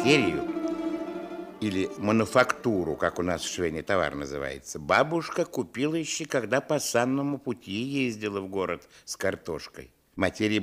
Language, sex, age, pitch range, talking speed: Russian, male, 60-79, 85-125 Hz, 130 wpm